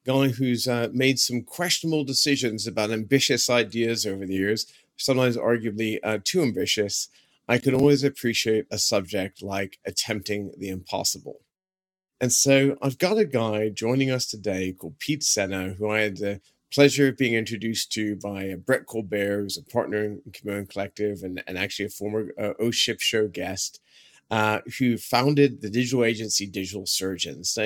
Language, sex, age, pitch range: English, male, 30-49, 100-130 Hz